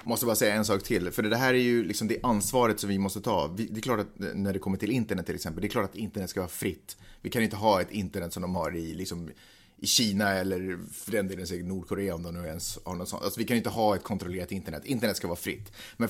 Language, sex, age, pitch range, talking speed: Swedish, male, 30-49, 95-115 Hz, 265 wpm